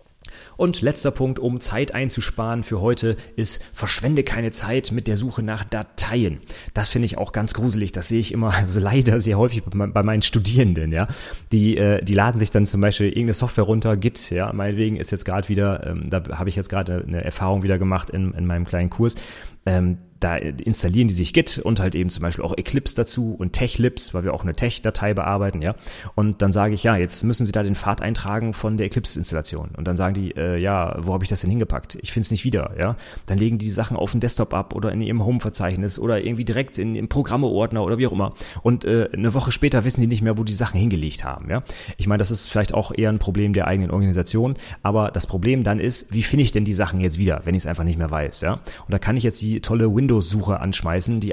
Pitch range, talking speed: 95-115 Hz, 235 wpm